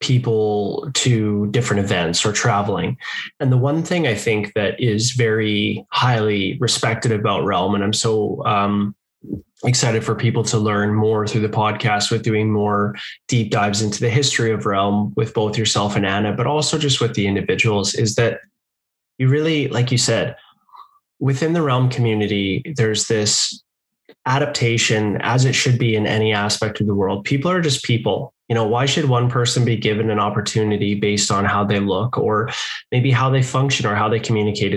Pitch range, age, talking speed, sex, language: 105-130 Hz, 20-39, 180 wpm, male, English